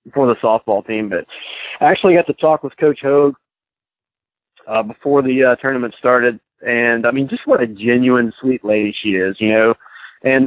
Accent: American